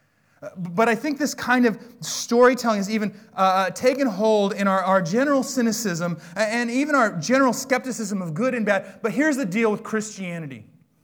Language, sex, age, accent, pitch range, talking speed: English, male, 30-49, American, 150-225 Hz, 175 wpm